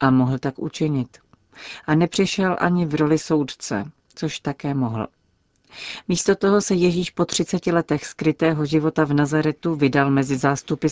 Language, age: Czech, 40-59